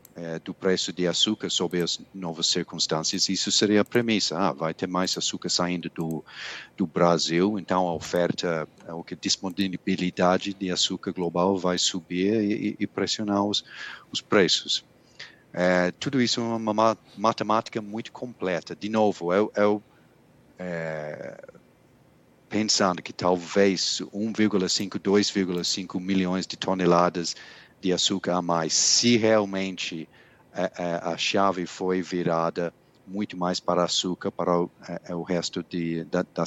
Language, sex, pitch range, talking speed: Portuguese, male, 85-100 Hz, 140 wpm